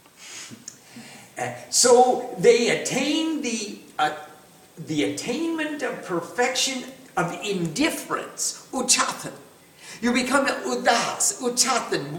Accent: American